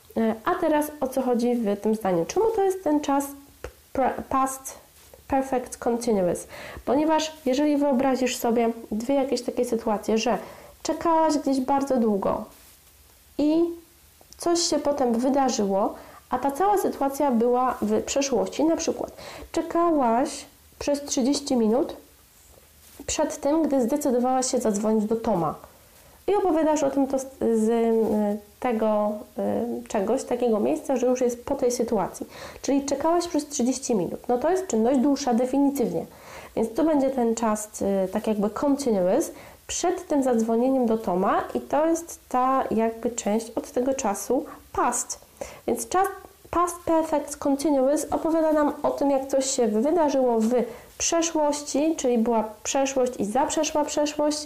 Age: 20-39